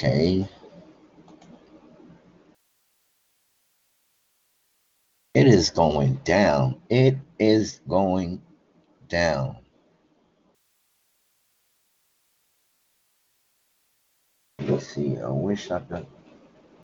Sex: male